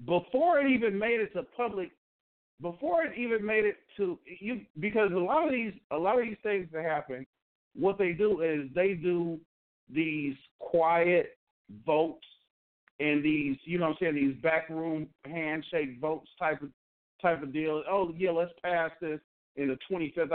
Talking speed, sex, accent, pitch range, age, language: 175 wpm, male, American, 135-170 Hz, 50-69, English